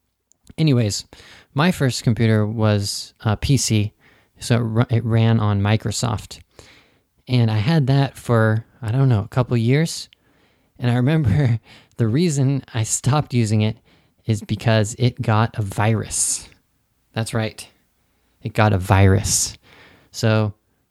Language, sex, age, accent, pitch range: Japanese, male, 20-39, American, 105-125 Hz